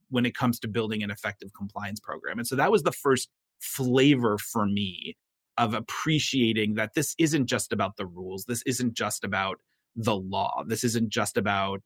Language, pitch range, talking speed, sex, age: English, 105-130 Hz, 185 wpm, male, 30-49